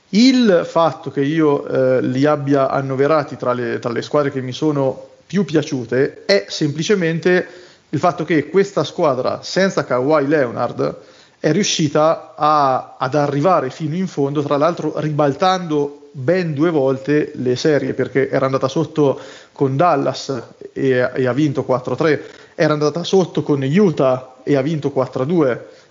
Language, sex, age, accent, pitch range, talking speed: Italian, male, 30-49, native, 135-160 Hz, 145 wpm